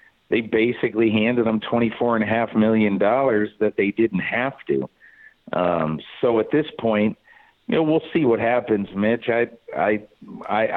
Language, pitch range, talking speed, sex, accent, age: English, 100-120 Hz, 165 wpm, male, American, 50-69